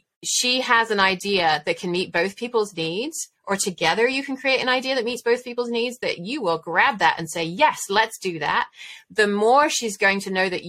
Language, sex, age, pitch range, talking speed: English, female, 30-49, 165-235 Hz, 225 wpm